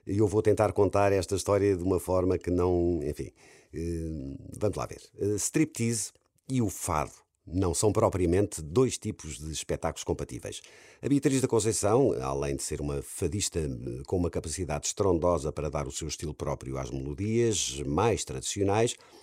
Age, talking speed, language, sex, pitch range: 50-69, 160 wpm, Portuguese, male, 75-105 Hz